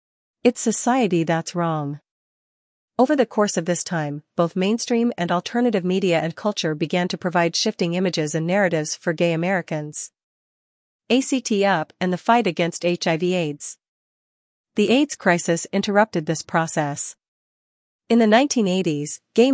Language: English